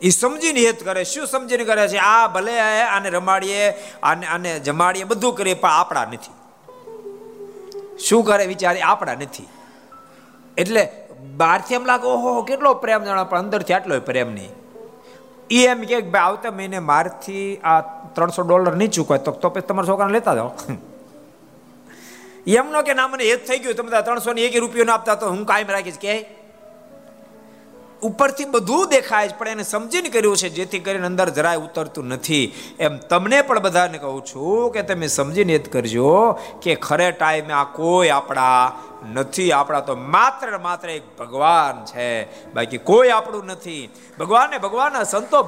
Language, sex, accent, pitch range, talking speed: Gujarati, male, native, 160-235 Hz, 125 wpm